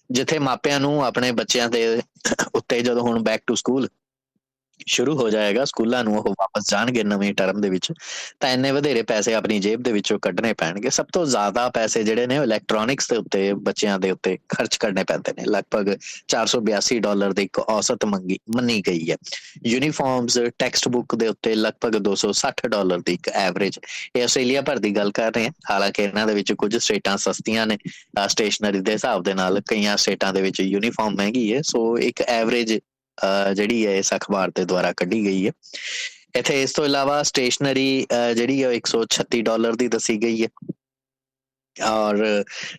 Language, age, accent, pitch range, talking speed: English, 20-39, Indian, 100-125 Hz, 100 wpm